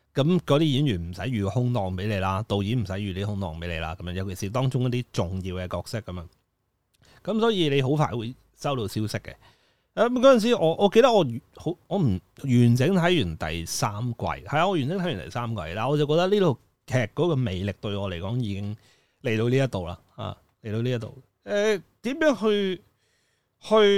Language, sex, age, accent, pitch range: Chinese, male, 30-49, native, 100-150 Hz